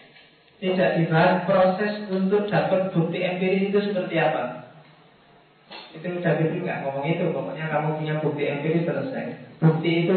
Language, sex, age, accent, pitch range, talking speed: Indonesian, male, 40-59, native, 155-195 Hz, 140 wpm